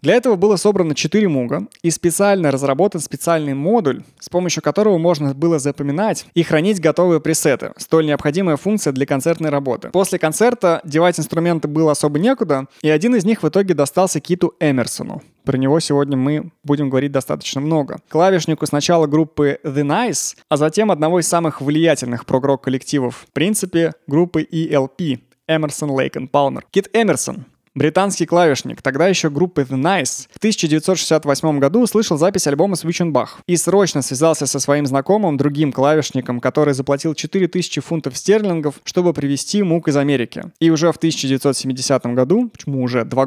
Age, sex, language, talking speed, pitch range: 20-39, male, Russian, 155 wpm, 140-180 Hz